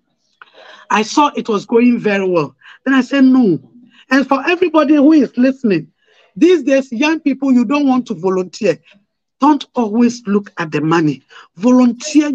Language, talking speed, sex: English, 160 wpm, male